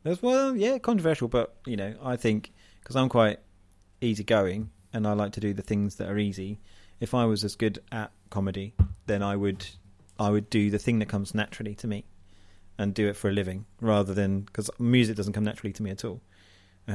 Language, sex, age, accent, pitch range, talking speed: English, male, 30-49, British, 95-105 Hz, 215 wpm